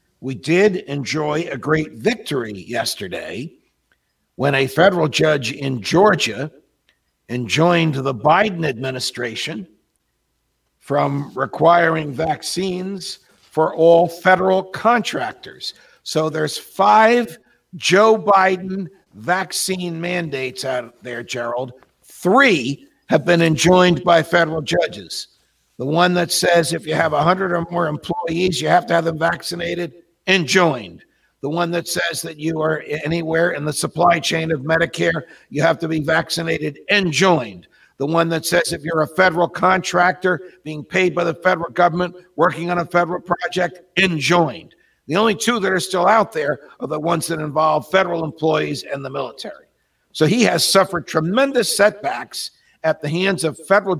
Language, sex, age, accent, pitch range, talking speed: English, male, 60-79, American, 155-185 Hz, 145 wpm